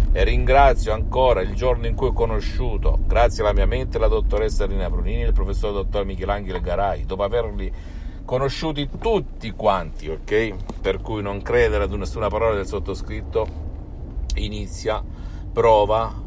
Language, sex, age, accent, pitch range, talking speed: Italian, male, 50-69, native, 95-120 Hz, 150 wpm